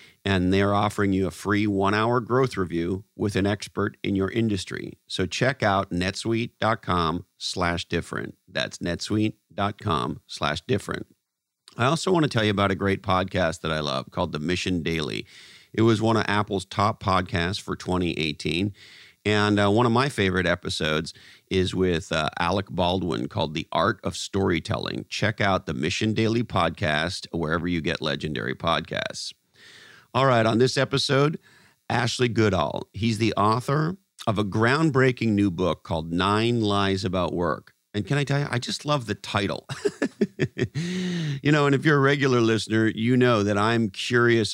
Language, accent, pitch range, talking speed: English, American, 95-120 Hz, 165 wpm